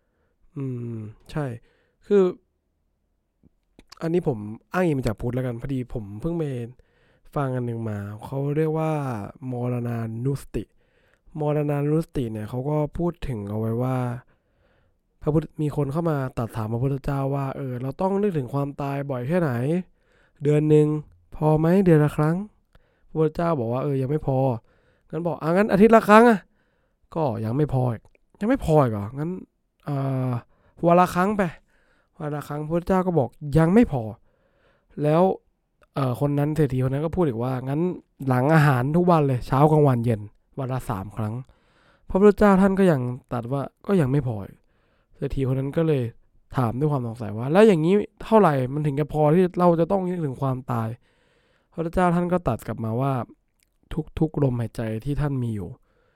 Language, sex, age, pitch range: English, male, 20-39, 125-160 Hz